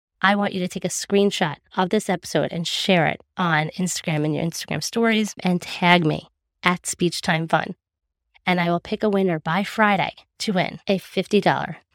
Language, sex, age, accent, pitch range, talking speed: English, female, 20-39, American, 160-195 Hz, 190 wpm